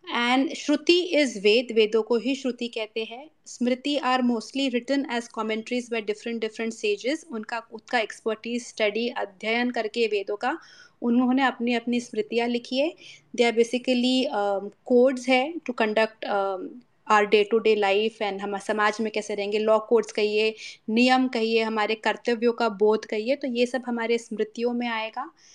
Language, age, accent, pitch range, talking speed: Hindi, 30-49, native, 220-255 Hz, 160 wpm